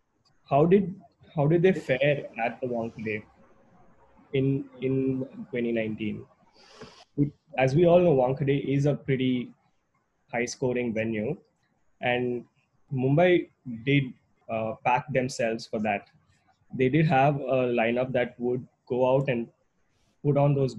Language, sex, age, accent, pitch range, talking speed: English, male, 20-39, Indian, 120-150 Hz, 130 wpm